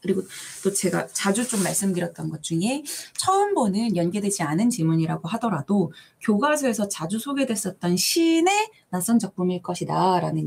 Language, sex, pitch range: Korean, female, 160-220 Hz